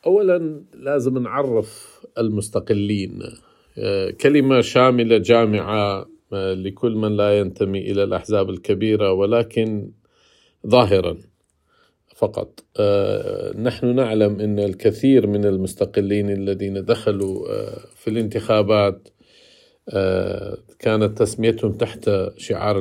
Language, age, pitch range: Arabic, 50-69, 100-120 Hz